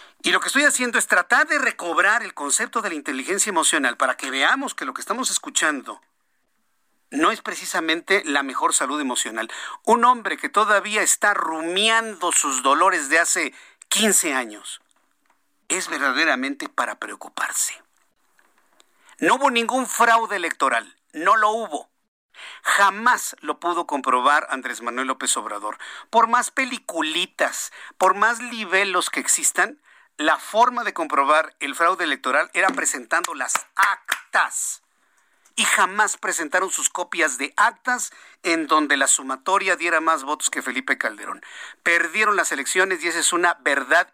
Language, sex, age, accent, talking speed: Spanish, male, 50-69, Mexican, 145 wpm